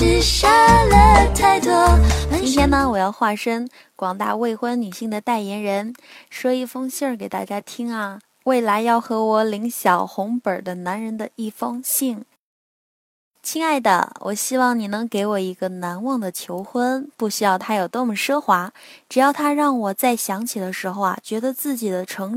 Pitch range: 200-260 Hz